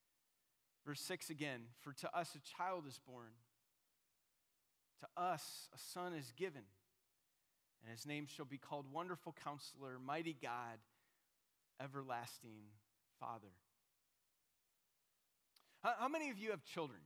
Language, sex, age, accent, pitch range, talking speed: English, male, 30-49, American, 140-205 Hz, 120 wpm